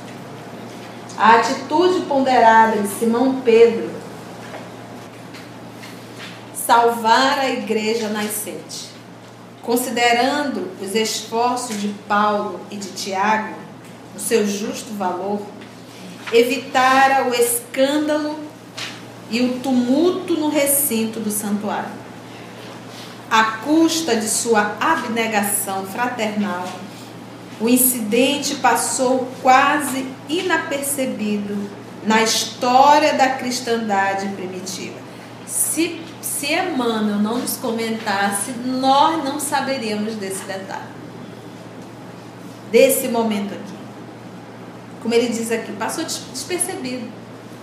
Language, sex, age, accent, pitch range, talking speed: Portuguese, female, 40-59, Brazilian, 210-270 Hz, 85 wpm